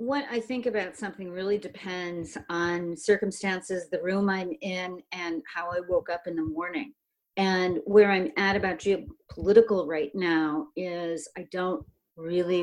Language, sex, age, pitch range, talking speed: English, female, 50-69, 175-230 Hz, 155 wpm